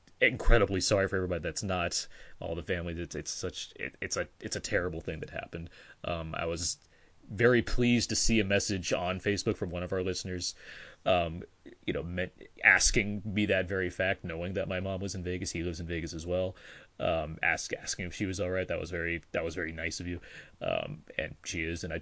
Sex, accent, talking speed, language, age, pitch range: male, American, 225 wpm, English, 30-49, 85-105 Hz